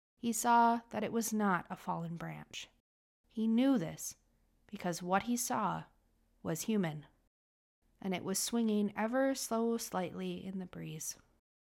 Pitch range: 145-225 Hz